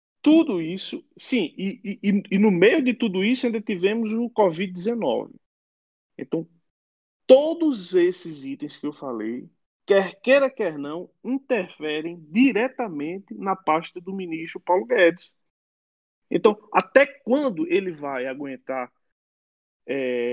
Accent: Brazilian